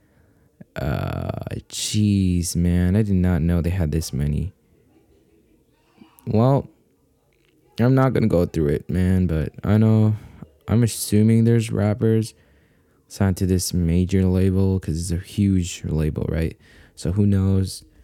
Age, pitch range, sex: 20-39, 85-110 Hz, male